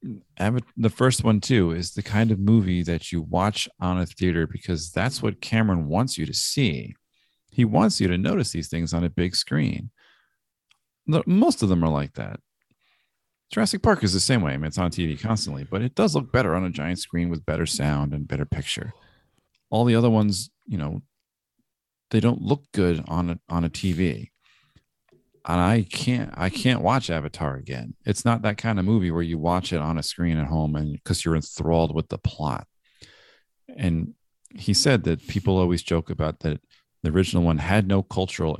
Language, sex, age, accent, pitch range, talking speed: English, male, 40-59, American, 80-105 Hz, 195 wpm